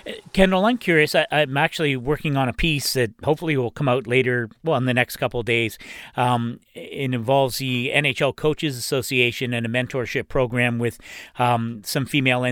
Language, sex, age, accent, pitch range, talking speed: English, male, 40-59, American, 120-150 Hz, 175 wpm